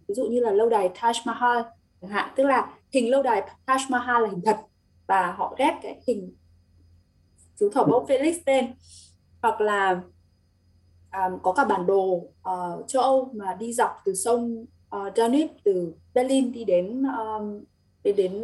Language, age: Vietnamese, 20-39